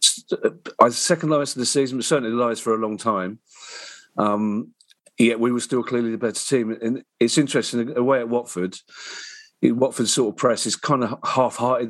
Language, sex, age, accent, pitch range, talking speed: English, male, 40-59, British, 110-125 Hz, 180 wpm